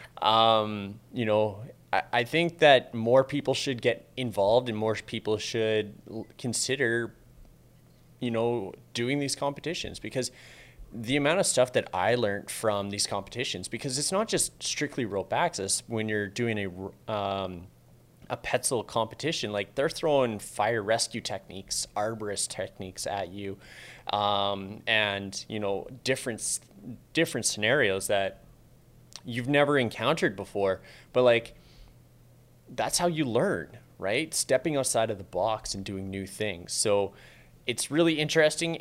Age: 20-39